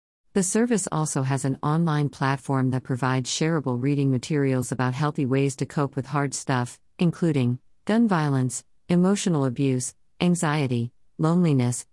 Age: 50-69